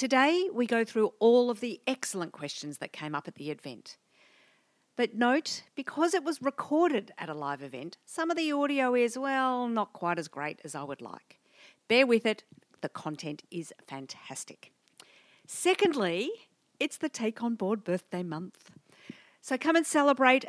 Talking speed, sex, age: 170 wpm, female, 50-69